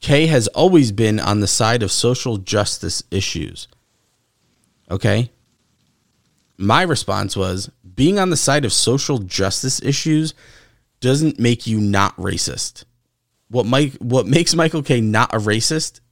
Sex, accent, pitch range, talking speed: male, American, 110-145 Hz, 140 wpm